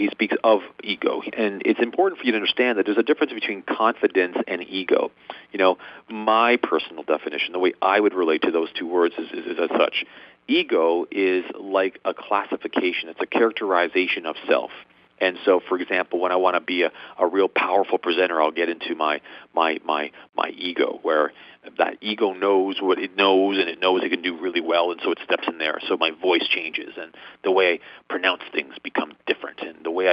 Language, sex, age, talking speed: English, male, 40-59, 210 wpm